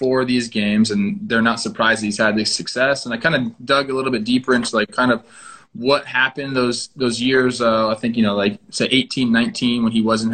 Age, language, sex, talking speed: 20-39, English, male, 240 wpm